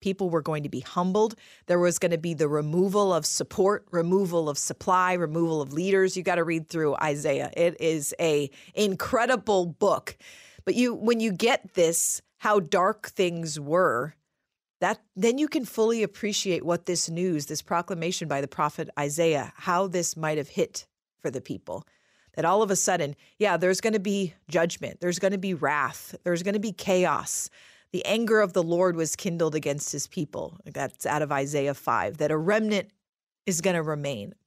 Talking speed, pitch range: 190 wpm, 155-195 Hz